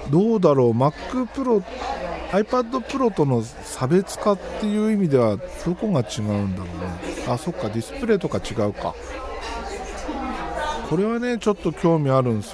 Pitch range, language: 120-200 Hz, Japanese